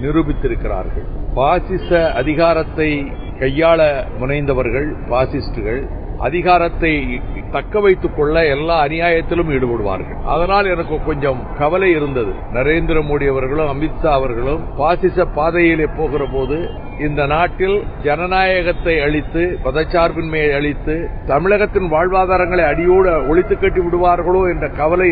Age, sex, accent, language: 60-79, male, native, Tamil